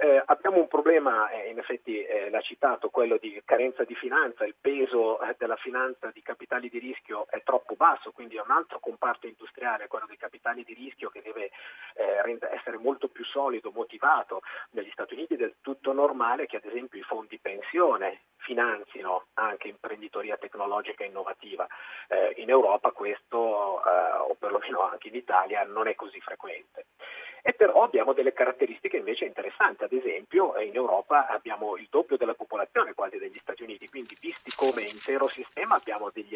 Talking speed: 175 wpm